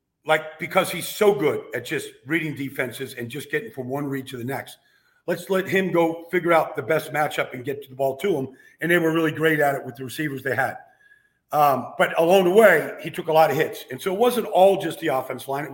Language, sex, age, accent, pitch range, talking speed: English, male, 50-69, American, 140-180 Hz, 250 wpm